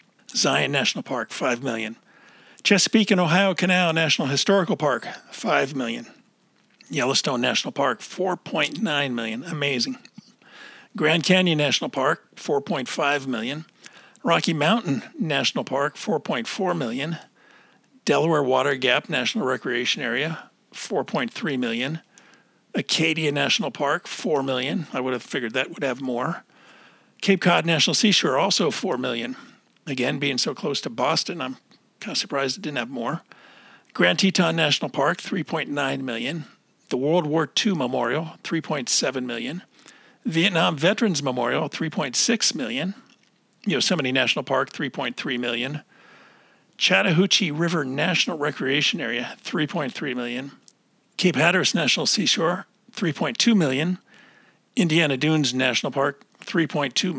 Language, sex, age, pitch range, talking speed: English, male, 50-69, 140-205 Hz, 120 wpm